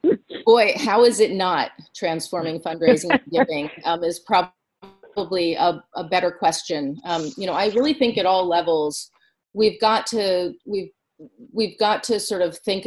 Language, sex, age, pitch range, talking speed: English, female, 30-49, 170-200 Hz, 165 wpm